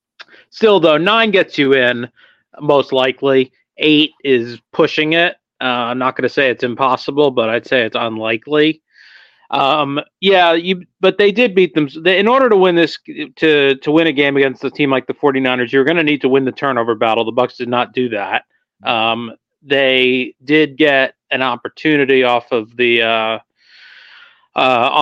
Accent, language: American, English